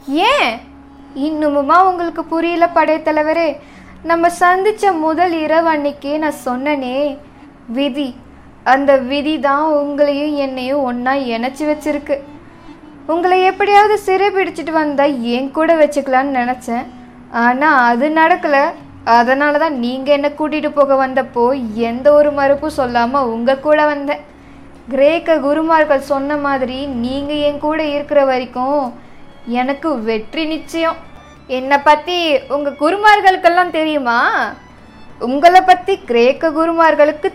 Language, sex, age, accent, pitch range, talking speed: Tamil, female, 20-39, native, 260-310 Hz, 105 wpm